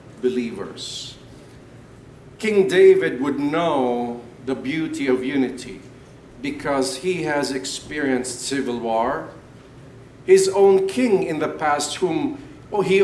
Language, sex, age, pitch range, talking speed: English, male, 50-69, 130-170 Hz, 105 wpm